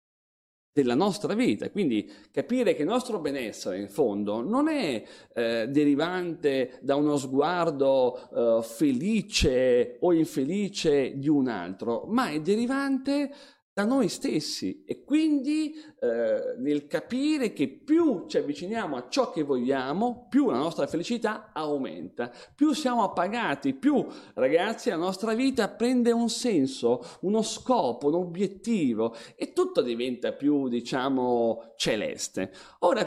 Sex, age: male, 40-59